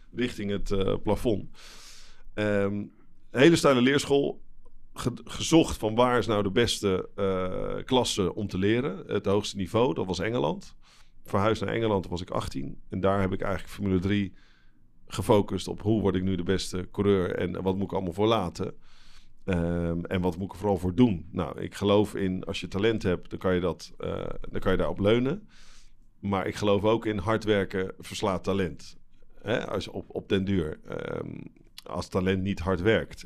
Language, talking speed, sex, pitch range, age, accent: Dutch, 190 wpm, male, 90-110 Hz, 50-69, Dutch